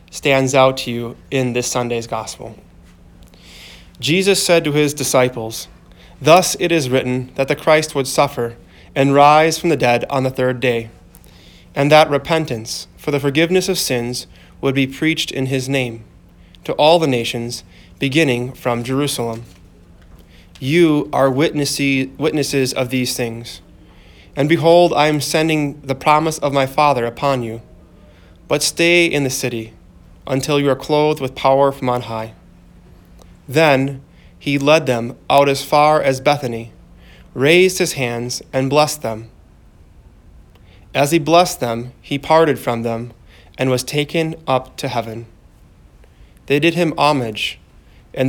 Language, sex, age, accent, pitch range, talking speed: English, male, 20-39, American, 110-145 Hz, 145 wpm